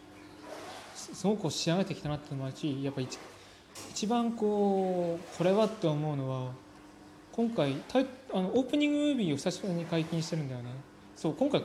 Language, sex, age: Japanese, male, 20-39